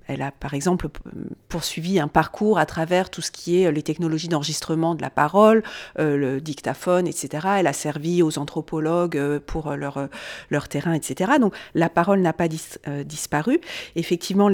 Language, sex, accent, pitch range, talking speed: French, female, French, 165-210 Hz, 190 wpm